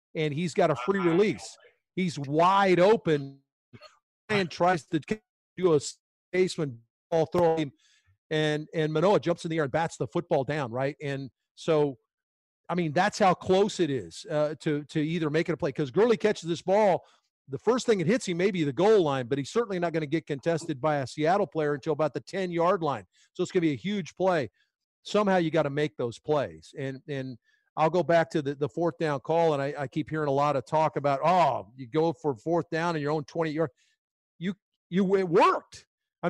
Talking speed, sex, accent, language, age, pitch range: 220 wpm, male, American, English, 40-59, 150-185 Hz